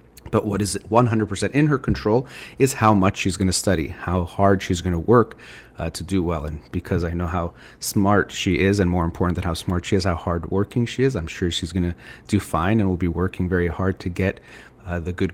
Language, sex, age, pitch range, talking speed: English, male, 30-49, 90-110 Hz, 245 wpm